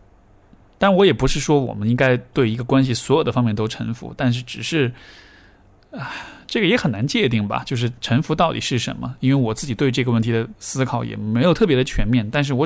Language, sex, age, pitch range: Chinese, male, 20-39, 115-150 Hz